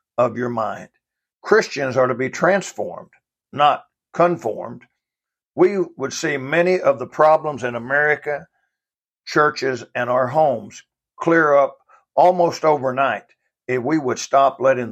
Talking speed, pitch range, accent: 130 wpm, 120-155 Hz, American